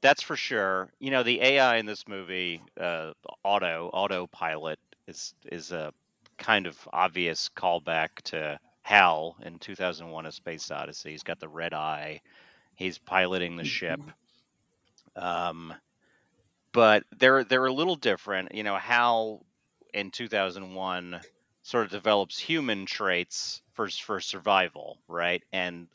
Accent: American